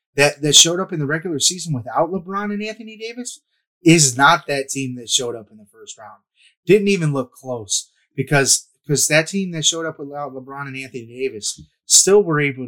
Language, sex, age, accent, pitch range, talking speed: English, male, 30-49, American, 125-150 Hz, 205 wpm